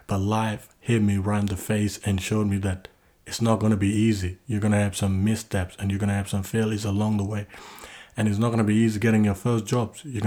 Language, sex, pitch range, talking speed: English, male, 100-110 Hz, 240 wpm